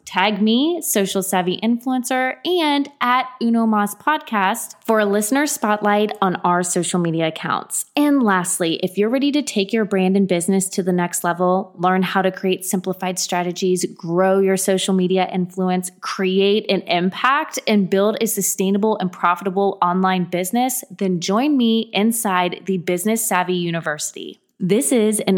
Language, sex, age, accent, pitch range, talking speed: English, female, 20-39, American, 185-230 Hz, 155 wpm